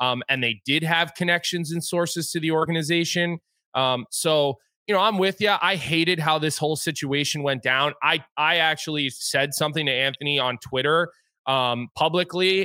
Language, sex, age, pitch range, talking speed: English, male, 20-39, 130-160 Hz, 175 wpm